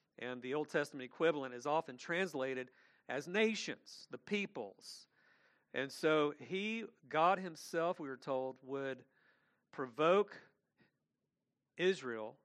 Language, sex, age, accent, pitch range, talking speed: English, male, 50-69, American, 140-185 Hz, 110 wpm